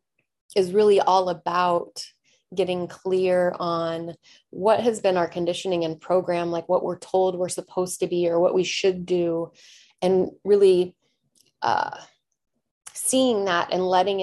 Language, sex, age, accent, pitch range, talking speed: English, female, 30-49, American, 170-190 Hz, 145 wpm